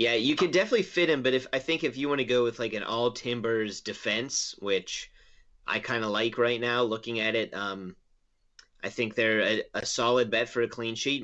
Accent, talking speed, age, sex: American, 225 wpm, 30-49, male